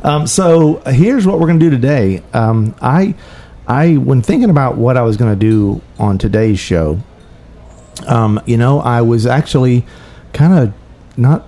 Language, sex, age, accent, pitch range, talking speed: English, male, 50-69, American, 110-160 Hz, 175 wpm